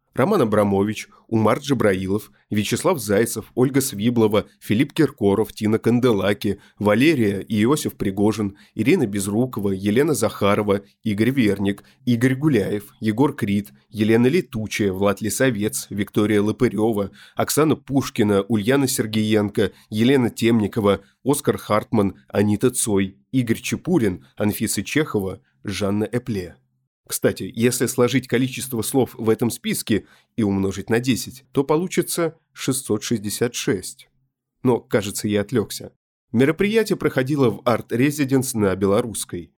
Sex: male